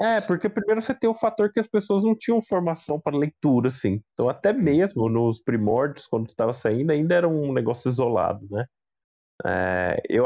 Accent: Brazilian